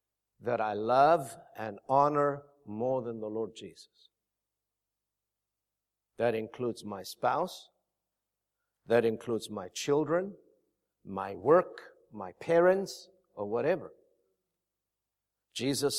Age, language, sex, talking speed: 50-69, English, male, 95 wpm